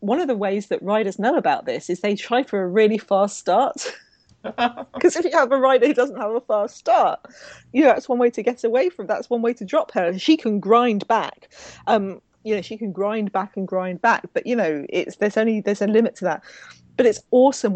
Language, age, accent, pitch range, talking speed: English, 40-59, British, 185-235 Hz, 245 wpm